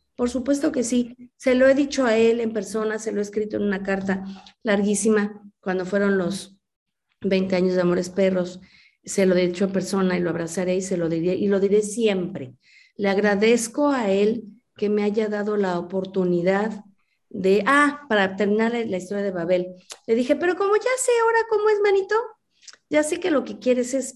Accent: Mexican